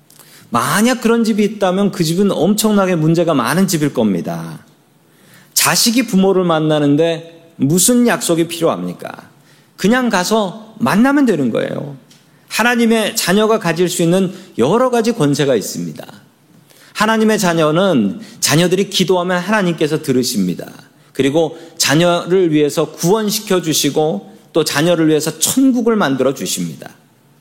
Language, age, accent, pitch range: Korean, 40-59, native, 150-210 Hz